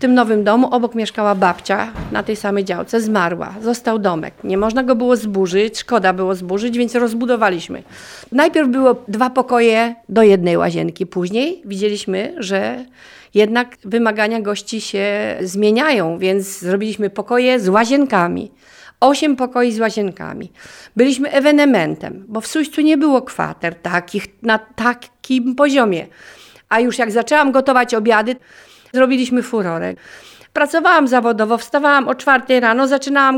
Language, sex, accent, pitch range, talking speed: Polish, female, native, 215-275 Hz, 135 wpm